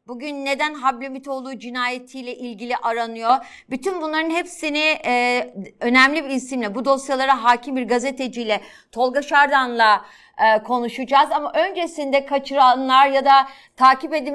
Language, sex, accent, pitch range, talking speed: Turkish, female, native, 230-285 Hz, 115 wpm